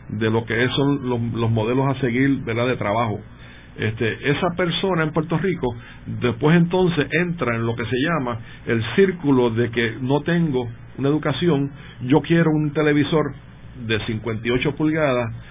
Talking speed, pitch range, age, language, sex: 145 wpm, 120-155 Hz, 50-69, Spanish, male